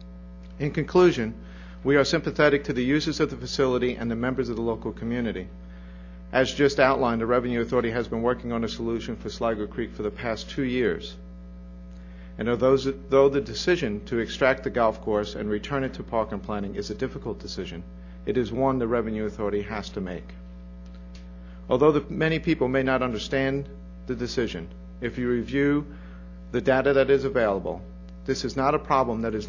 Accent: American